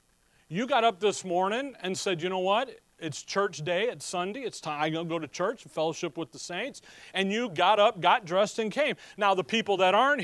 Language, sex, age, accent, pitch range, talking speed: English, male, 40-59, American, 155-205 Hz, 225 wpm